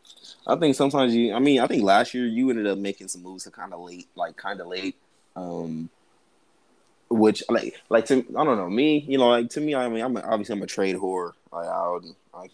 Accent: American